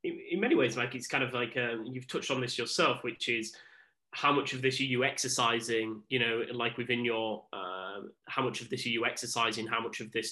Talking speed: 235 wpm